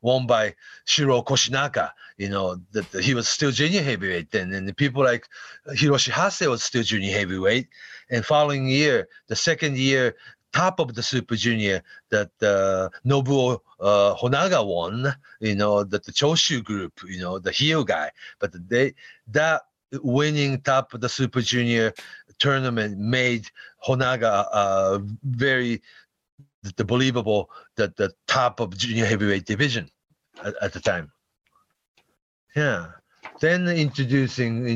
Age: 40-59